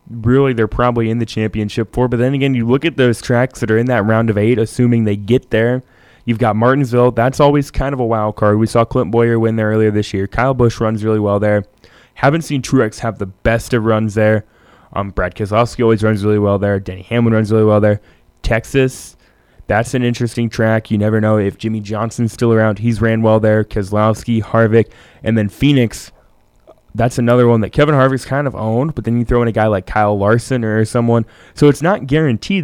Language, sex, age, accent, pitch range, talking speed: English, male, 10-29, American, 105-120 Hz, 220 wpm